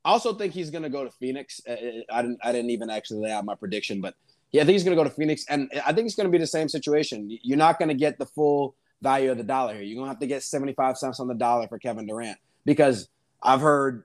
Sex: male